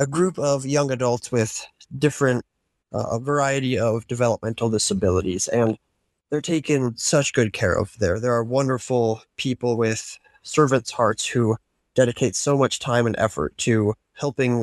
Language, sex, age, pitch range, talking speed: English, male, 20-39, 110-130 Hz, 150 wpm